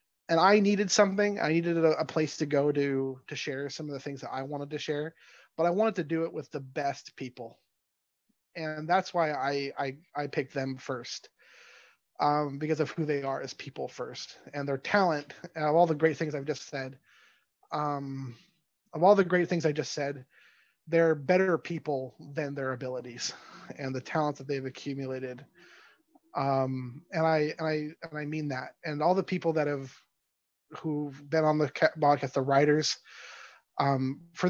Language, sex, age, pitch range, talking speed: English, male, 30-49, 135-160 Hz, 190 wpm